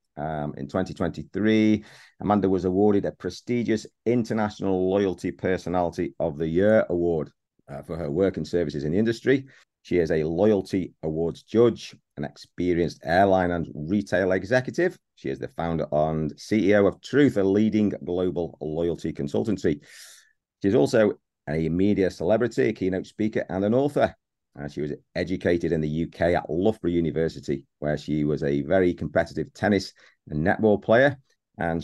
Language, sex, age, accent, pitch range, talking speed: English, male, 40-59, British, 80-105 Hz, 150 wpm